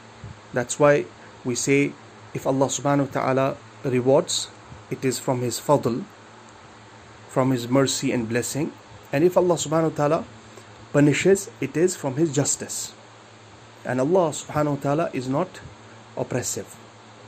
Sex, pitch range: male, 110-140 Hz